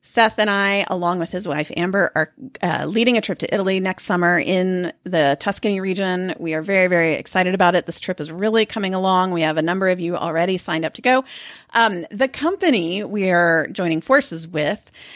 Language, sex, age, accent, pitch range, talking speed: English, female, 30-49, American, 175-230 Hz, 210 wpm